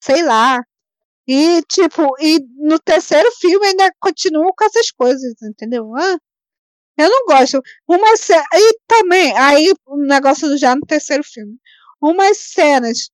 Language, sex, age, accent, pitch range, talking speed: Portuguese, female, 20-39, Brazilian, 265-385 Hz, 145 wpm